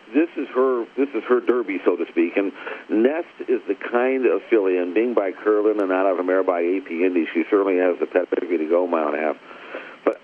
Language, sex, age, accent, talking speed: English, male, 50-69, American, 245 wpm